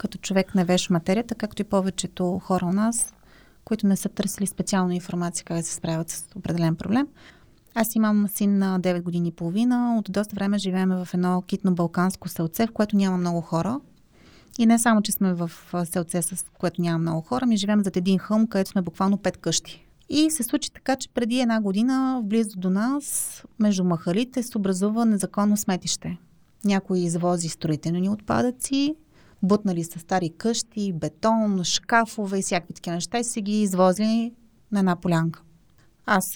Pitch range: 175-215 Hz